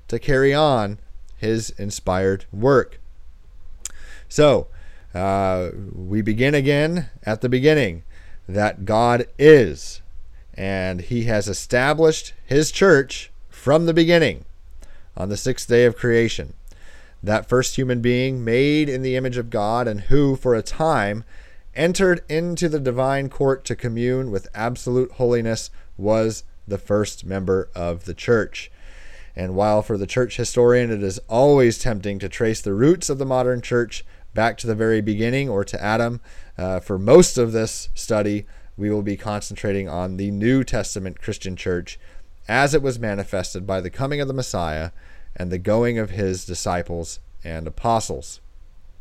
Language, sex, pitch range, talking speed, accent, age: English, male, 90-125 Hz, 150 wpm, American, 40-59